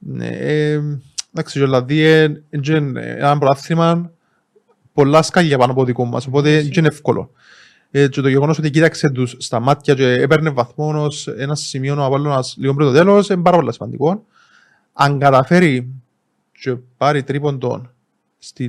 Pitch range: 135-165 Hz